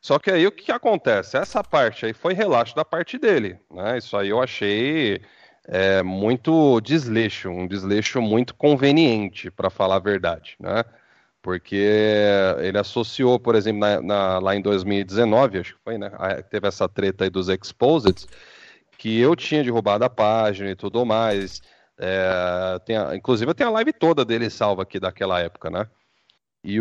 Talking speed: 170 wpm